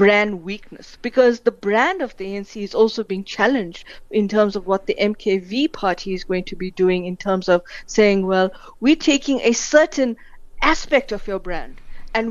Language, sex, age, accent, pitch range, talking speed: English, female, 50-69, Indian, 200-250 Hz, 185 wpm